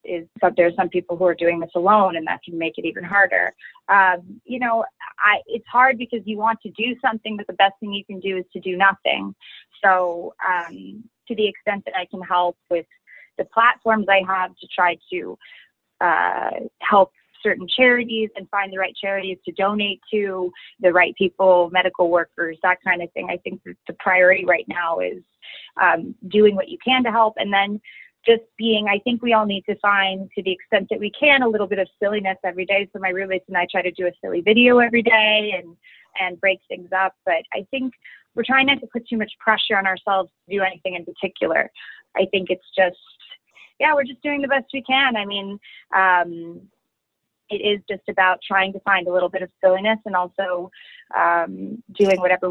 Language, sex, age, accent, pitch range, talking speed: English, female, 20-39, American, 180-220 Hz, 215 wpm